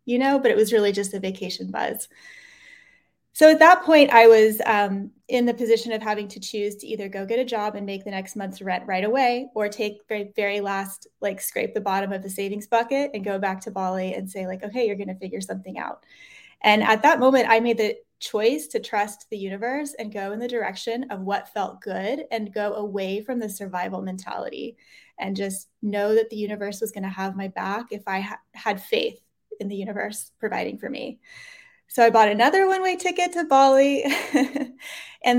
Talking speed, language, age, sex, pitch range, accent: 210 wpm, English, 20-39, female, 200-245 Hz, American